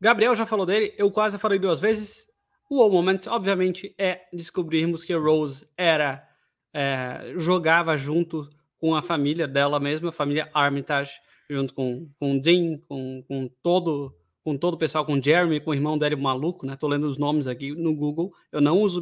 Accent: Brazilian